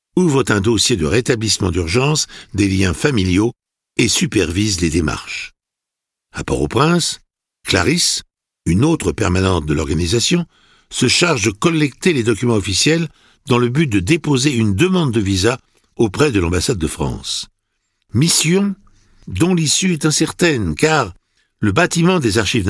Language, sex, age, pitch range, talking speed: French, male, 60-79, 105-160 Hz, 135 wpm